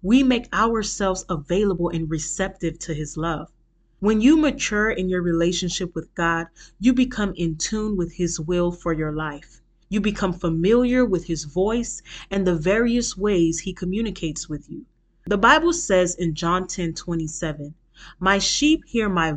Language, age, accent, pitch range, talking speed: English, 30-49, American, 165-210 Hz, 165 wpm